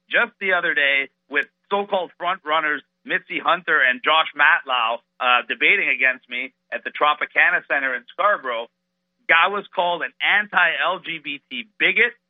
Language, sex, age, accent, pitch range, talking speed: English, male, 50-69, American, 165-235 Hz, 140 wpm